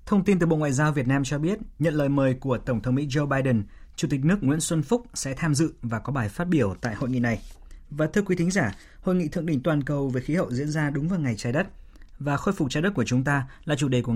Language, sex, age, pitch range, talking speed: Vietnamese, male, 20-39, 120-155 Hz, 295 wpm